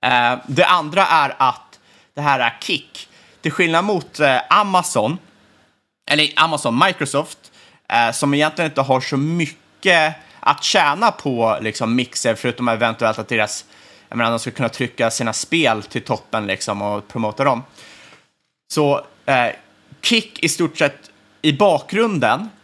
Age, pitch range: 30-49, 115-155 Hz